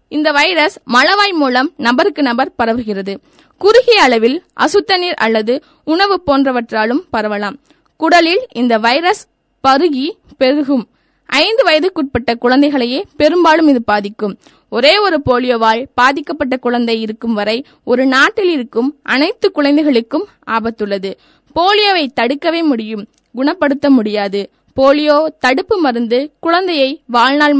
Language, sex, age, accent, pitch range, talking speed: Tamil, female, 20-39, native, 240-310 Hz, 80 wpm